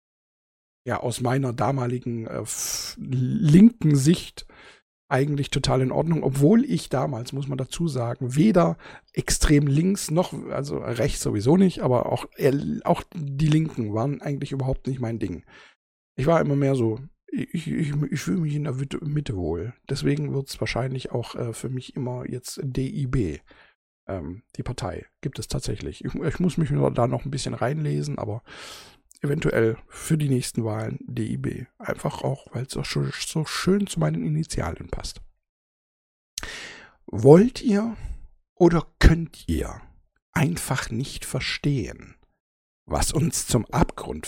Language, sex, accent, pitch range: German, male, German, 115-160 Hz